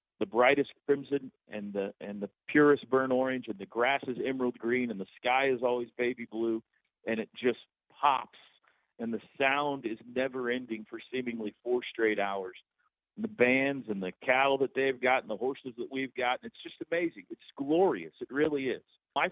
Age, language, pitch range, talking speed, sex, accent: 50-69, English, 110-135 Hz, 190 wpm, male, American